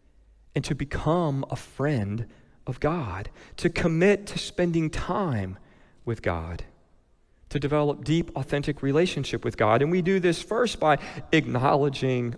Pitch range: 110-150 Hz